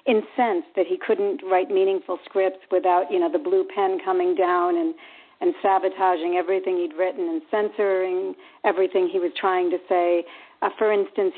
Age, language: 50-69, English